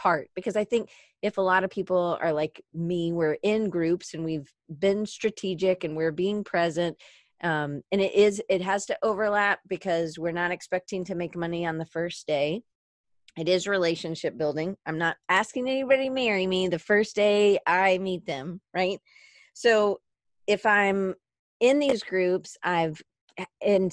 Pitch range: 165-205 Hz